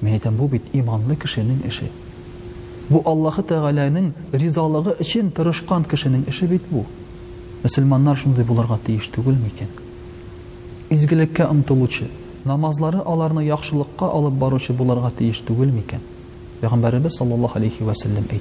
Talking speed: 85 wpm